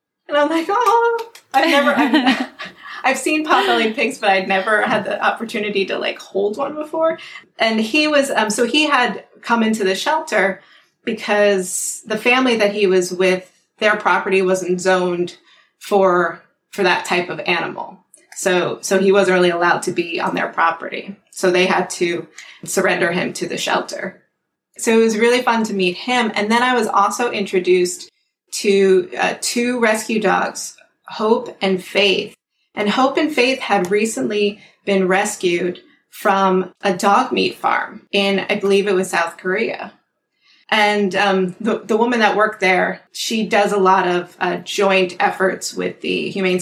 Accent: American